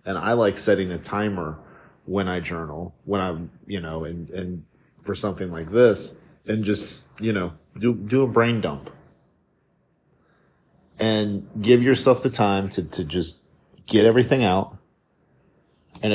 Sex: male